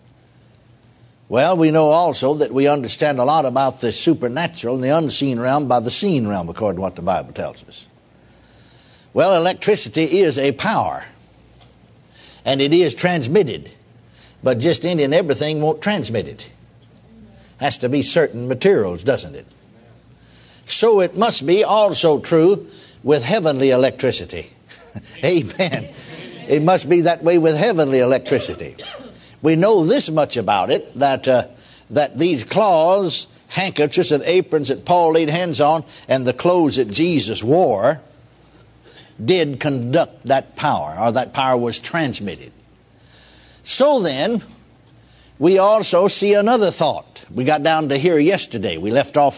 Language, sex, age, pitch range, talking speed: English, male, 60-79, 130-175 Hz, 145 wpm